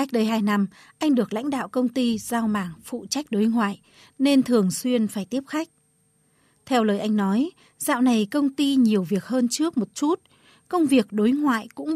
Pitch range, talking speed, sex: 190-255 Hz, 205 wpm, female